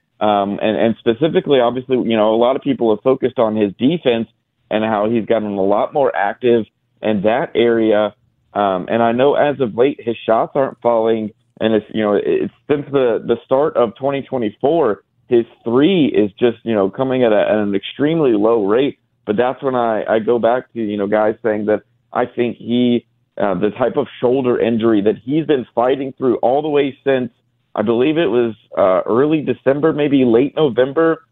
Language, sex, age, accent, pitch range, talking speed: English, male, 40-59, American, 110-135 Hz, 200 wpm